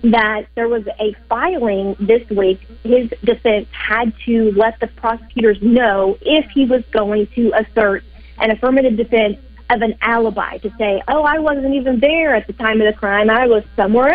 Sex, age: female, 30-49